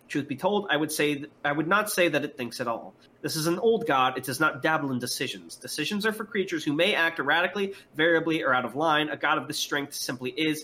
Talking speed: 265 wpm